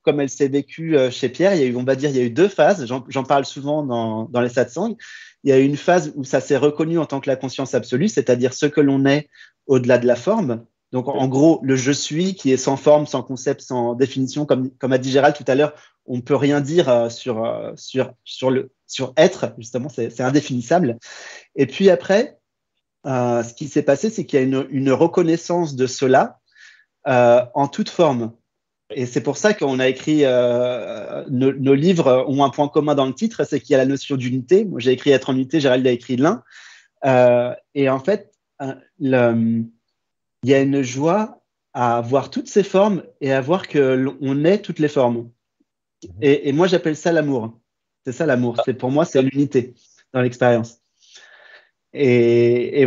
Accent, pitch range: French, 125-150 Hz